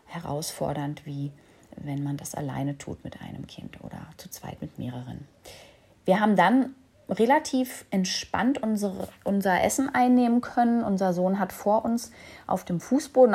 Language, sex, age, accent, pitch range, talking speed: German, female, 30-49, German, 170-205 Hz, 145 wpm